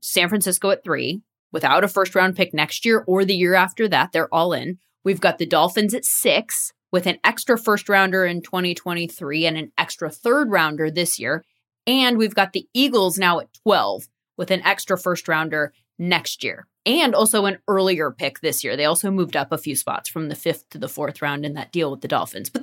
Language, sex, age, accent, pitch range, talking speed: English, female, 20-39, American, 155-195 Hz, 215 wpm